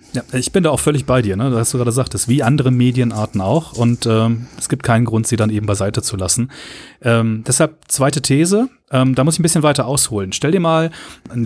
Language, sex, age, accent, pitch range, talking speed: German, male, 30-49, German, 120-160 Hz, 230 wpm